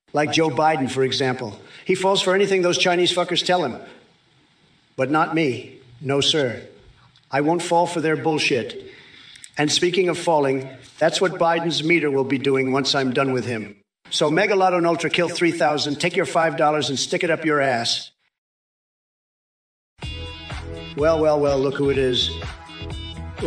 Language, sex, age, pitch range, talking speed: English, male, 50-69, 130-155 Hz, 165 wpm